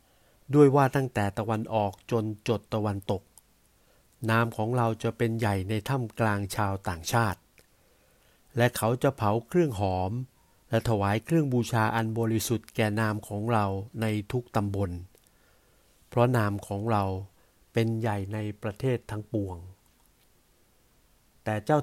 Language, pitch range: Thai, 100-125 Hz